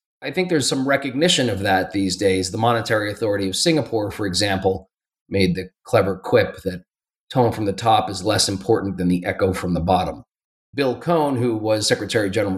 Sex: male